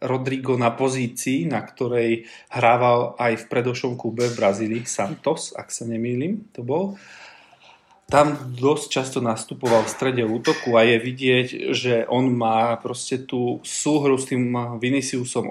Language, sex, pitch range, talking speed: Slovak, male, 120-130 Hz, 145 wpm